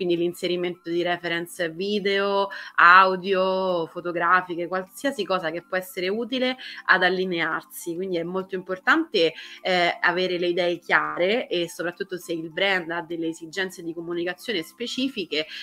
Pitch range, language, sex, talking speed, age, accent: 170-195 Hz, Italian, female, 135 wpm, 30-49, native